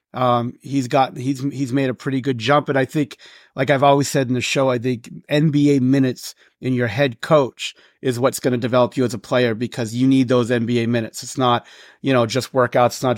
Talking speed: 230 wpm